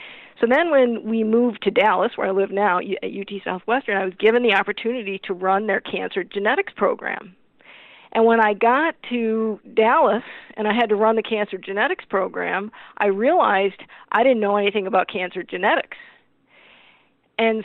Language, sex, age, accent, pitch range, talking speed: English, female, 50-69, American, 195-230 Hz, 170 wpm